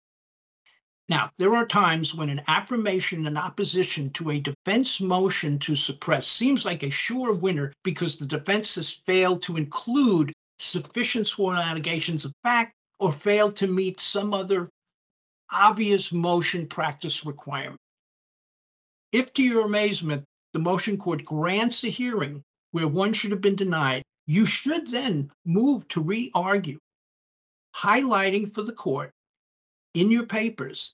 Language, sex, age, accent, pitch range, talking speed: English, male, 50-69, American, 155-205 Hz, 140 wpm